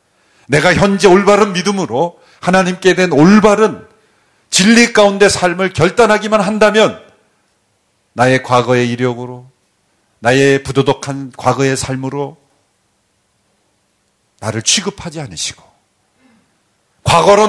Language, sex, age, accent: Korean, male, 40-59, native